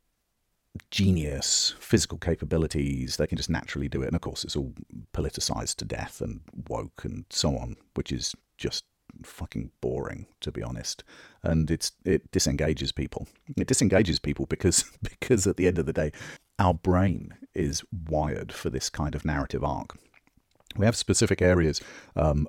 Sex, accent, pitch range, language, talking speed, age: male, British, 75-90 Hz, English, 165 wpm, 40-59